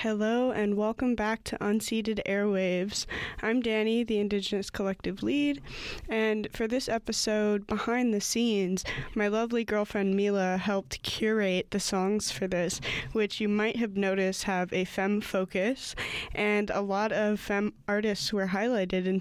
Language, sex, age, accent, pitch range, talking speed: English, female, 20-39, American, 190-220 Hz, 150 wpm